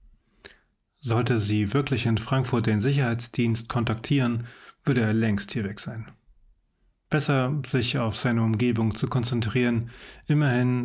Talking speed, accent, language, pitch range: 120 wpm, German, German, 110-140 Hz